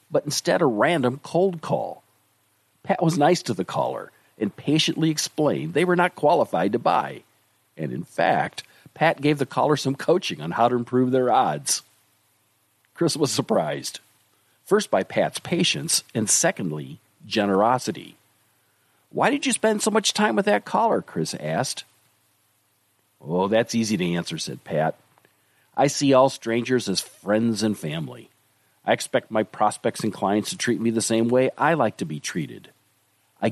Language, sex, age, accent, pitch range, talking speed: English, male, 50-69, American, 115-160 Hz, 165 wpm